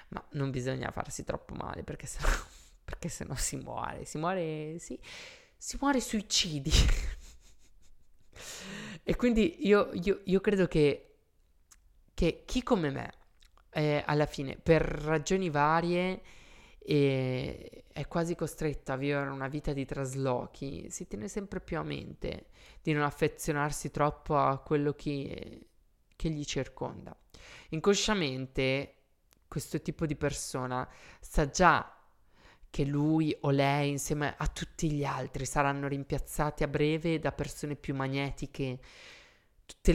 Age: 20-39